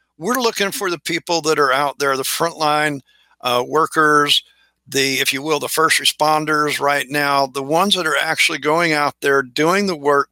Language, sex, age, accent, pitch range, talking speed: English, male, 50-69, American, 140-165 Hz, 190 wpm